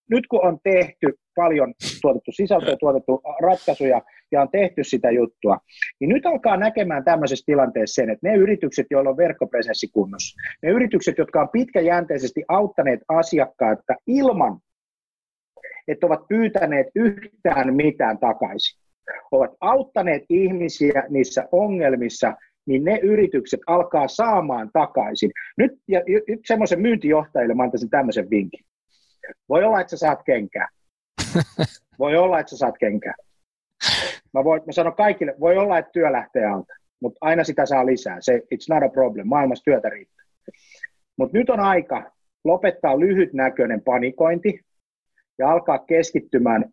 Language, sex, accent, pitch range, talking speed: Finnish, male, native, 130-200 Hz, 135 wpm